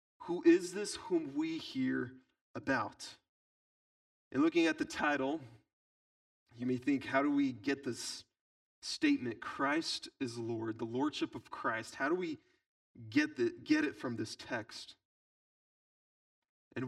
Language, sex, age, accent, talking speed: English, male, 30-49, American, 135 wpm